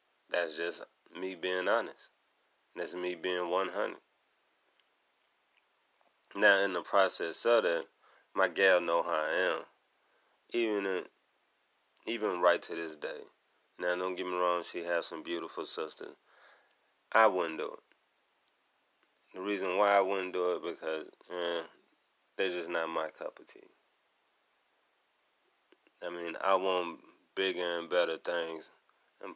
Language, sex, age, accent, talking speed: English, male, 30-49, American, 135 wpm